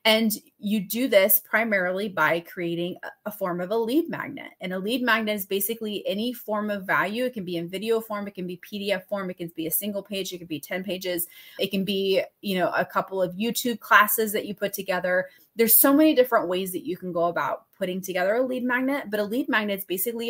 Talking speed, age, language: 235 wpm, 20-39, English